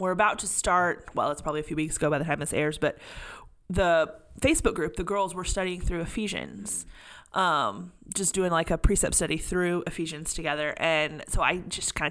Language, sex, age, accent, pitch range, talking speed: English, female, 30-49, American, 165-225 Hz, 205 wpm